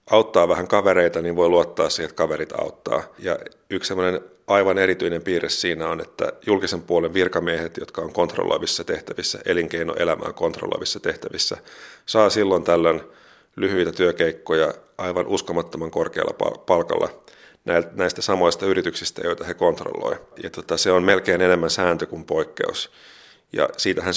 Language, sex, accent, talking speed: Finnish, male, native, 130 wpm